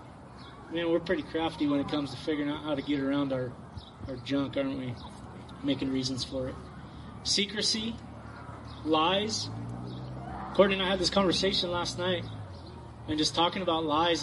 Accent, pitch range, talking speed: American, 140-210 Hz, 160 wpm